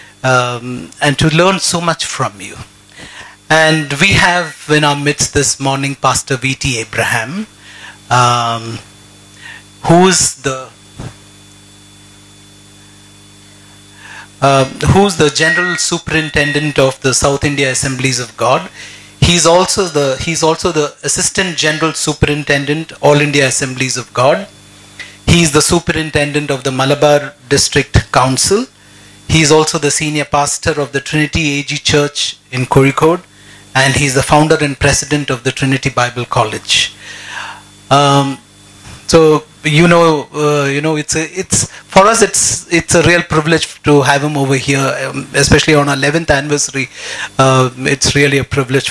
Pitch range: 130-160 Hz